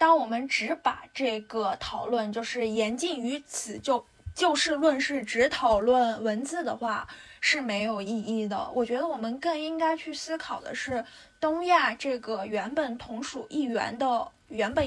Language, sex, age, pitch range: Chinese, female, 10-29, 230-305 Hz